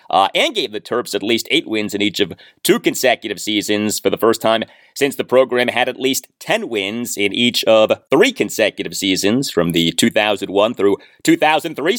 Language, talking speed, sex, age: English, 190 wpm, male, 30-49